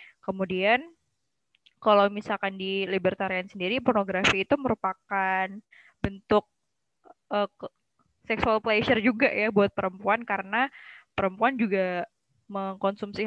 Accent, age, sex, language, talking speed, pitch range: native, 20-39, female, Indonesian, 95 wpm, 190-225 Hz